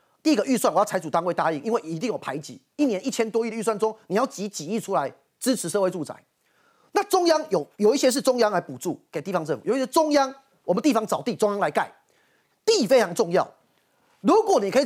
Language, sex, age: Chinese, male, 30-49